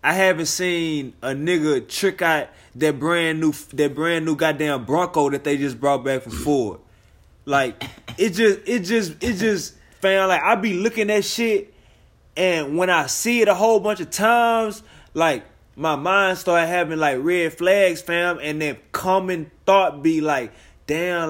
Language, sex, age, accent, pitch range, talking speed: English, male, 20-39, American, 150-190 Hz, 175 wpm